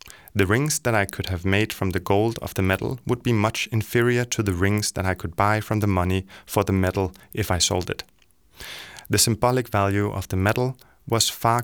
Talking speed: 215 wpm